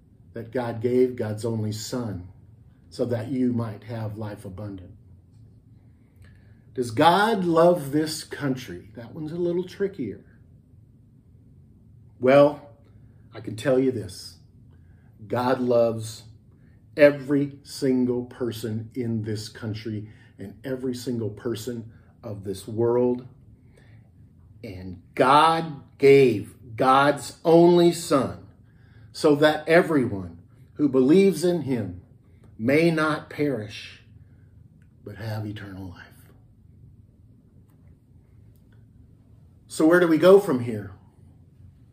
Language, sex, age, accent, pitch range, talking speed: English, male, 50-69, American, 110-130 Hz, 100 wpm